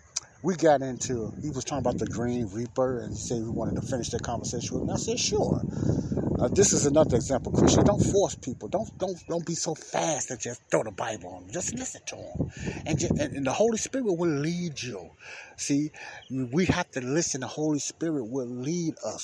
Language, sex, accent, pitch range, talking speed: English, male, American, 120-155 Hz, 220 wpm